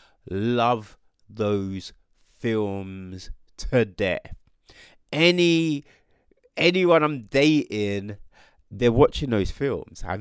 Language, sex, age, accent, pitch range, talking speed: English, male, 30-49, British, 110-150 Hz, 80 wpm